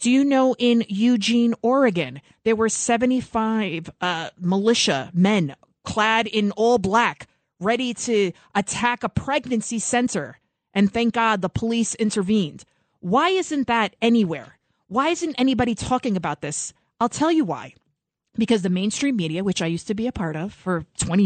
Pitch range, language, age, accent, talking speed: 180-250 Hz, English, 30-49, American, 160 wpm